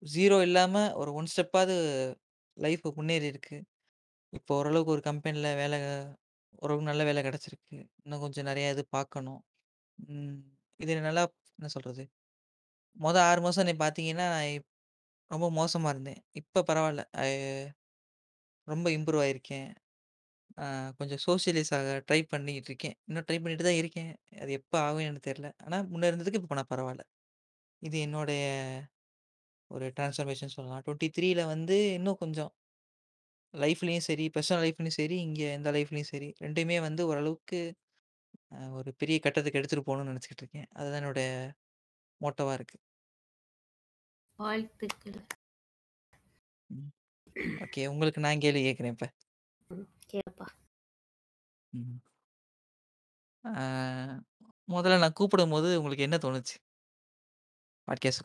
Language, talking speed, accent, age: Tamil, 105 wpm, native, 20-39